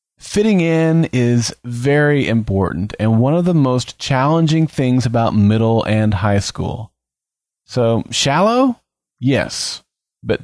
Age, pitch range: 30-49, 105-140 Hz